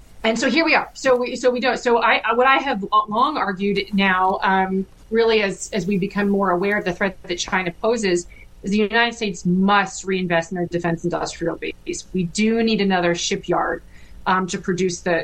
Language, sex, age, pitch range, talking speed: English, female, 30-49, 185-220 Hz, 205 wpm